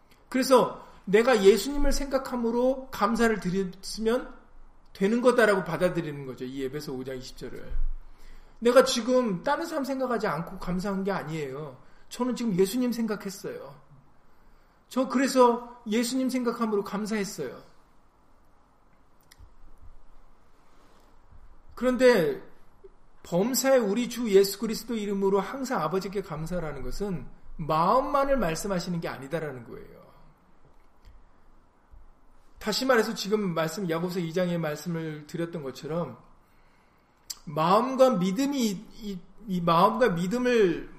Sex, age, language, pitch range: male, 40-59, Korean, 170-245 Hz